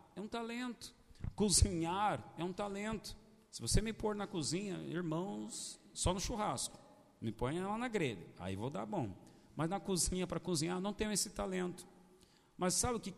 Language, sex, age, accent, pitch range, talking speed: Portuguese, male, 50-69, Brazilian, 170-250 Hz, 180 wpm